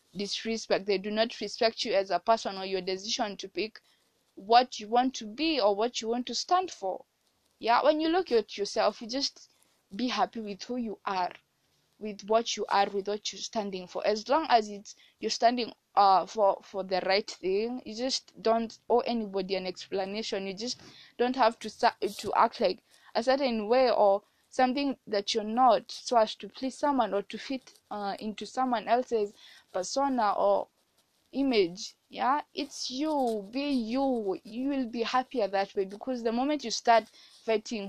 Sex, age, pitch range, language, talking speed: female, 20-39, 200-250 Hz, English, 185 wpm